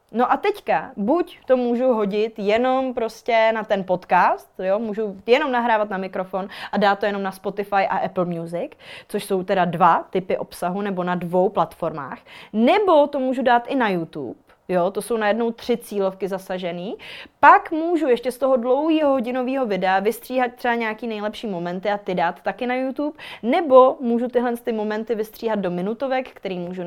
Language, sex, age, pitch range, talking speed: Czech, female, 20-39, 195-240 Hz, 180 wpm